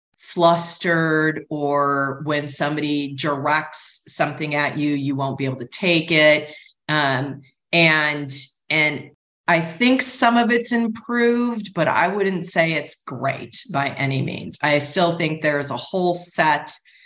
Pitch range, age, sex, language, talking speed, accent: 140-165 Hz, 40-59, female, English, 145 wpm, American